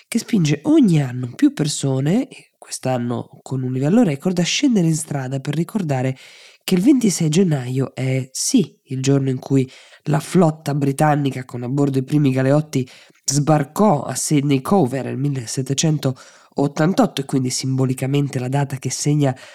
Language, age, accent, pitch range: Italian, 20-39, native, 135-160 Hz